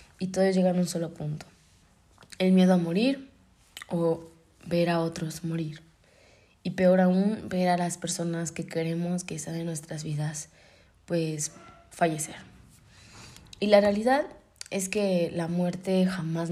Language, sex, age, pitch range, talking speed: Spanish, female, 20-39, 160-185 Hz, 145 wpm